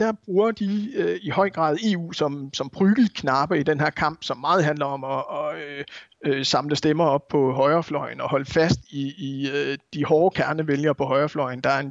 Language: Danish